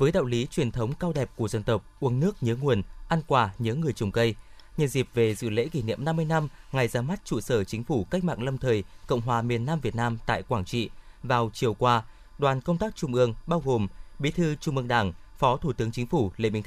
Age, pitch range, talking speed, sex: 20-39, 115-150 Hz, 255 wpm, male